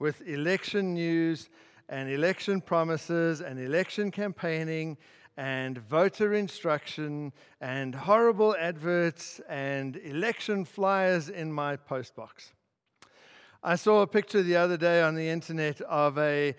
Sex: male